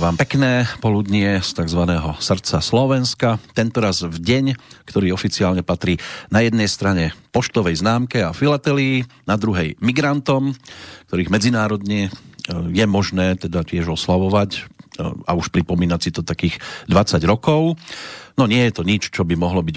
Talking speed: 145 wpm